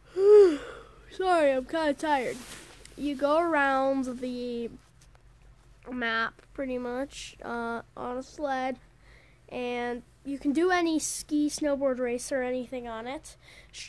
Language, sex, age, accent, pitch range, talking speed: English, female, 10-29, American, 245-295 Hz, 125 wpm